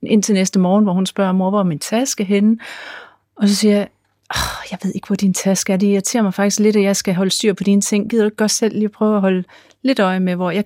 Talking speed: 285 wpm